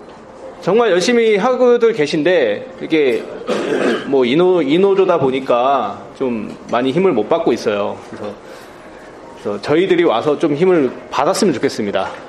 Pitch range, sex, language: 160-255 Hz, male, Korean